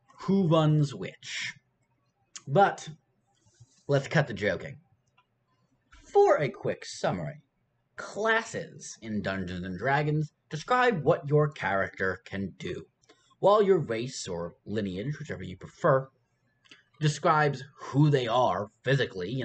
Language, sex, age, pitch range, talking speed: English, male, 30-49, 105-150 Hz, 110 wpm